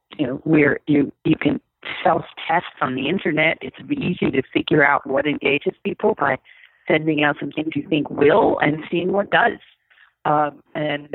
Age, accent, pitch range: 50-69, American, 145-180 Hz